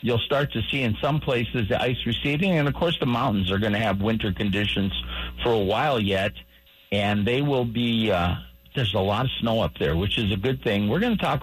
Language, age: English, 50-69